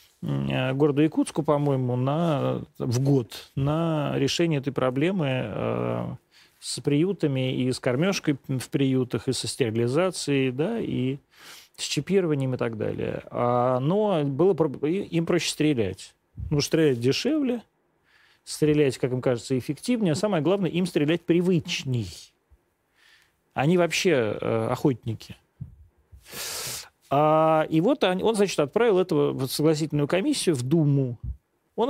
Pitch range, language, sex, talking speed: 130-180 Hz, Russian, male, 115 wpm